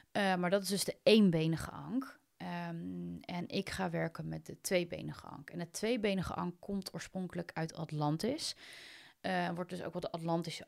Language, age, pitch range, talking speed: Dutch, 30-49, 165-205 Hz, 180 wpm